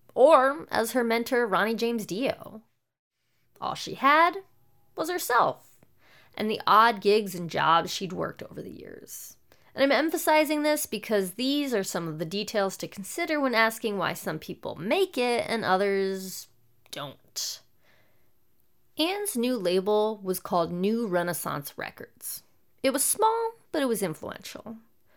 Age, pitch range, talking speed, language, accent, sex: 20-39, 185-280 Hz, 145 wpm, English, American, female